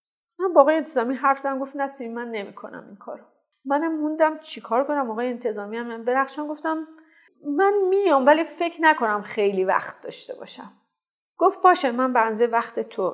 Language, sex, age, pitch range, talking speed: Persian, female, 40-59, 205-270 Hz, 155 wpm